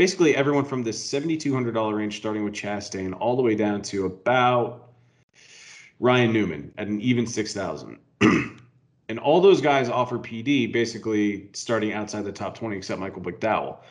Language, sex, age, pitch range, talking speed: English, male, 30-49, 110-135 Hz, 155 wpm